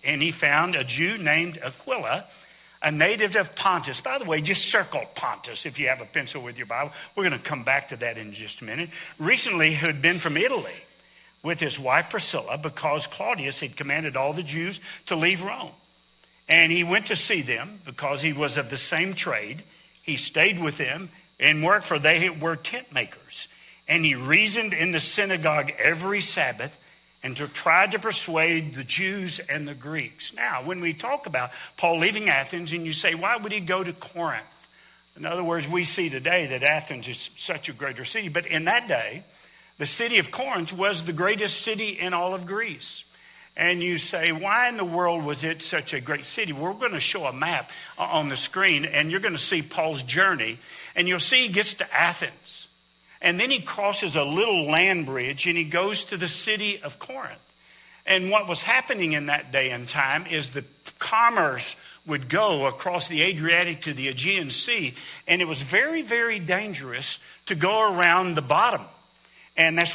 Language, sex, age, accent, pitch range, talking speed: English, male, 60-79, American, 150-195 Hz, 195 wpm